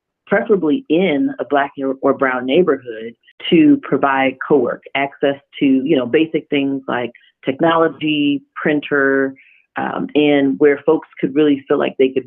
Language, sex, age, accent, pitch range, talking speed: English, female, 40-59, American, 140-170 Hz, 145 wpm